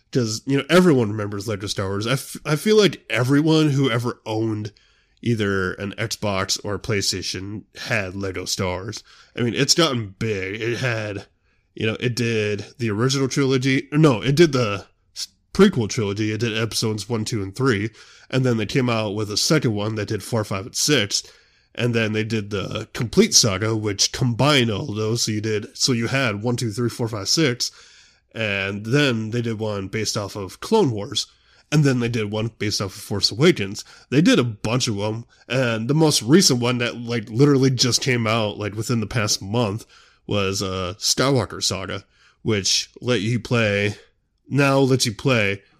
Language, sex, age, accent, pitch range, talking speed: English, male, 20-39, American, 105-130 Hz, 190 wpm